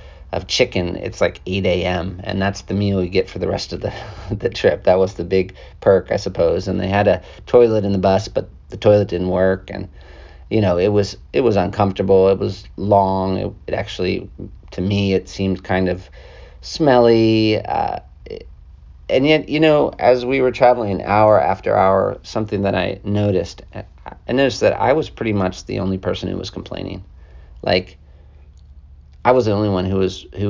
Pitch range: 80-105 Hz